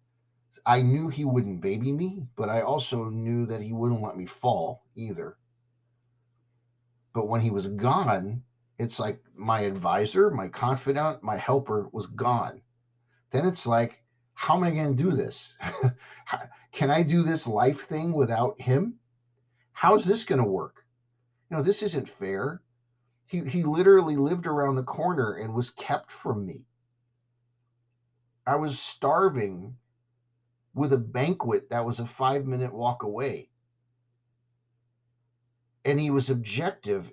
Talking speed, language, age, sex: 145 wpm, English, 50-69, male